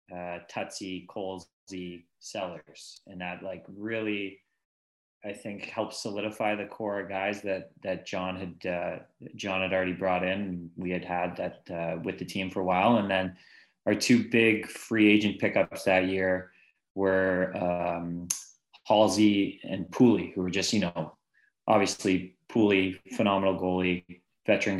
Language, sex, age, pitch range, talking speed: English, male, 20-39, 90-100 Hz, 150 wpm